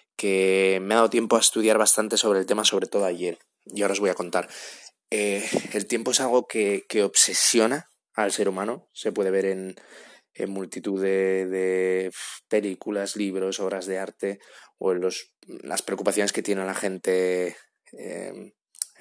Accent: Spanish